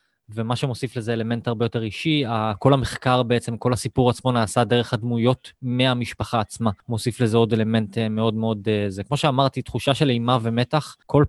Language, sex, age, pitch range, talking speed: Hebrew, male, 20-39, 115-140 Hz, 170 wpm